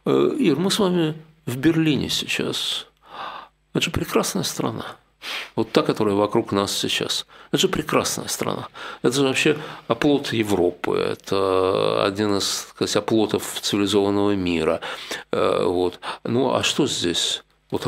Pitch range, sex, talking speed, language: 100-140 Hz, male, 125 wpm, Russian